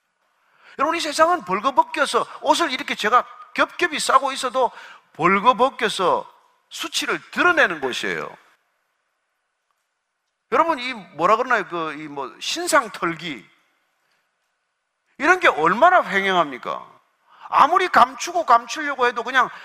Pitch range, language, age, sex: 225-325 Hz, Korean, 40-59, male